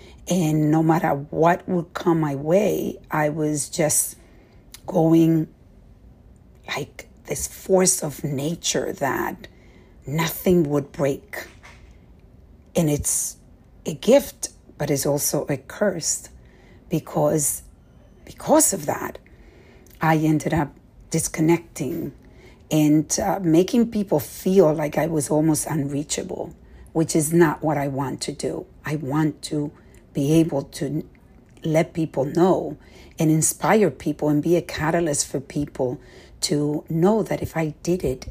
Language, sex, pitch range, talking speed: English, female, 150-180 Hz, 125 wpm